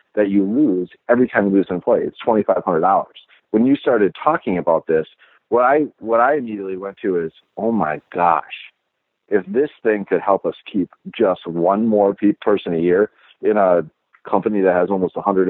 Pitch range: 100-140 Hz